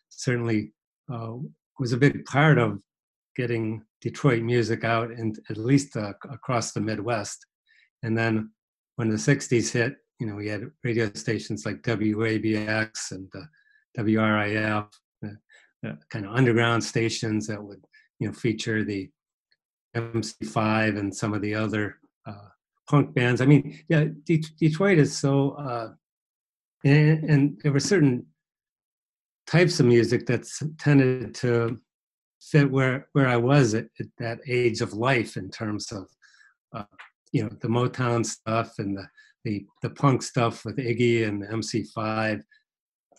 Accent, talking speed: American, 145 wpm